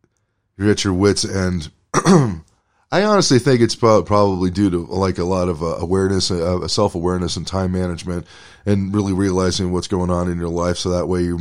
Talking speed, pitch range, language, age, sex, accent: 190 wpm, 90-105 Hz, English, 20-39, male, American